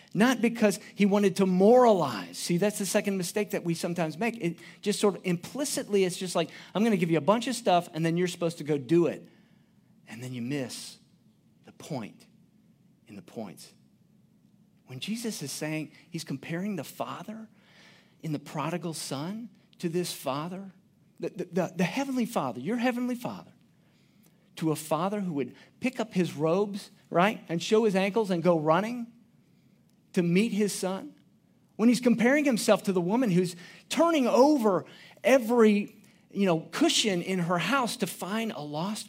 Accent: American